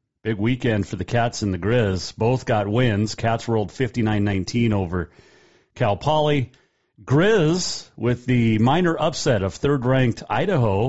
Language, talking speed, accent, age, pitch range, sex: English, 140 wpm, American, 40-59, 100-125 Hz, male